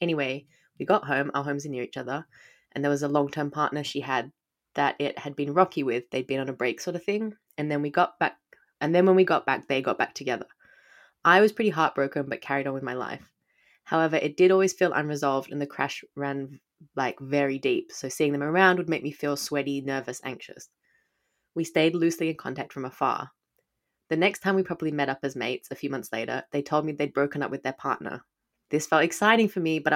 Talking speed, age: 230 wpm, 20-39